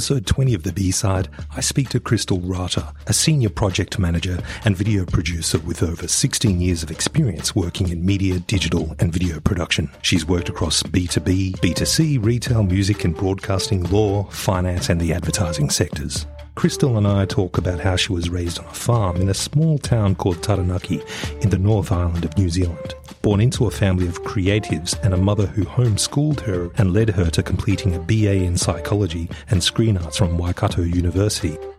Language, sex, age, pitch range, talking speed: English, male, 40-59, 90-110 Hz, 185 wpm